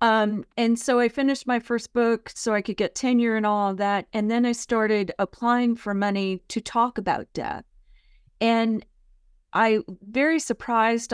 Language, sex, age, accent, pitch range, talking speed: English, female, 40-59, American, 195-235 Hz, 170 wpm